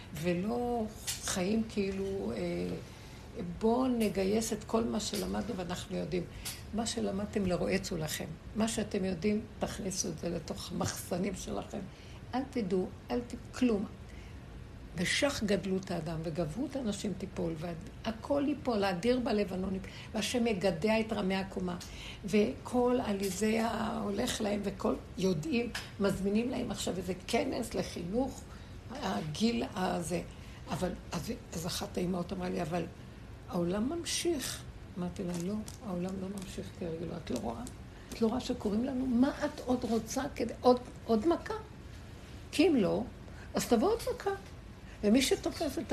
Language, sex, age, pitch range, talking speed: Hebrew, female, 60-79, 190-245 Hz, 135 wpm